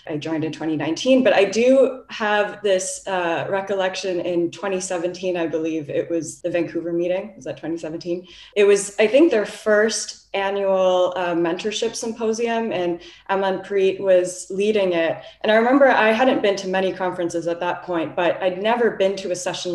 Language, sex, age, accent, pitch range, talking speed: English, female, 20-39, American, 170-200 Hz, 175 wpm